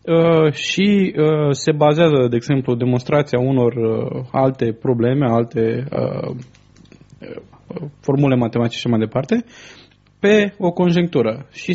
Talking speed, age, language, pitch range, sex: 115 wpm, 20-39, English, 120-160 Hz, male